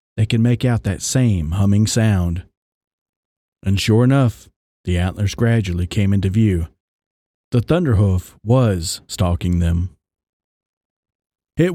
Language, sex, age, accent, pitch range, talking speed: English, male, 40-59, American, 100-150 Hz, 115 wpm